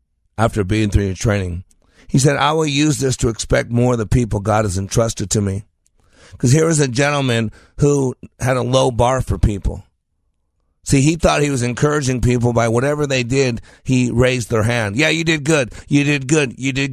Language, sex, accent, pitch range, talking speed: English, male, American, 100-150 Hz, 205 wpm